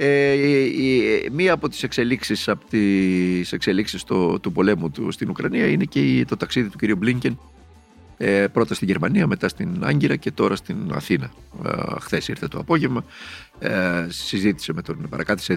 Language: Greek